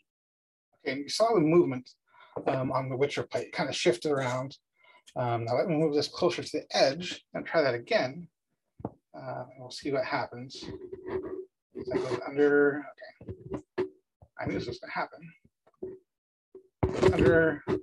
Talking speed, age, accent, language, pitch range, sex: 160 wpm, 30-49, American, English, 130-165 Hz, male